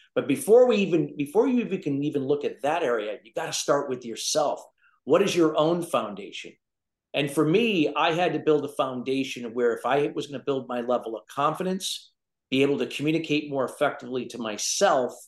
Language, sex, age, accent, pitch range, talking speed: English, male, 50-69, American, 120-155 Hz, 195 wpm